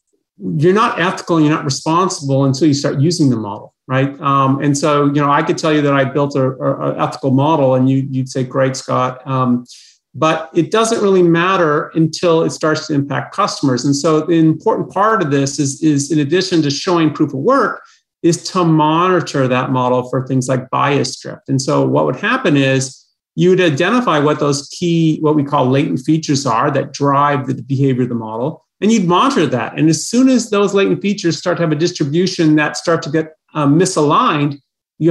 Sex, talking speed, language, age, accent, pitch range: male, 210 wpm, English, 40-59, American, 135-165 Hz